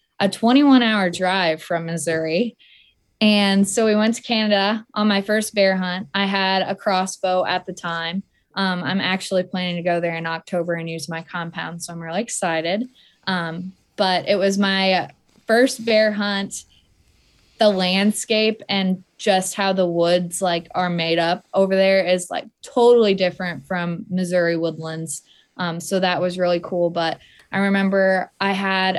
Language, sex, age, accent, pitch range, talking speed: English, female, 20-39, American, 175-195 Hz, 165 wpm